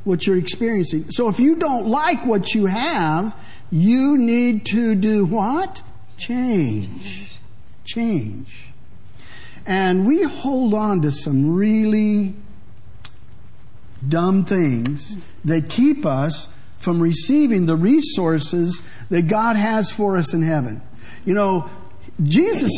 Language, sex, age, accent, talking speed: English, male, 50-69, American, 115 wpm